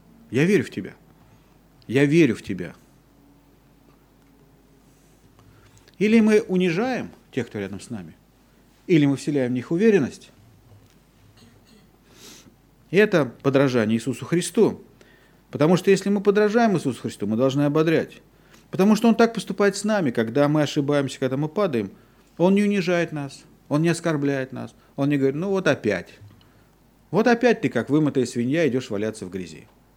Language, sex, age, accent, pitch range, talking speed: Russian, male, 40-59, native, 130-195 Hz, 150 wpm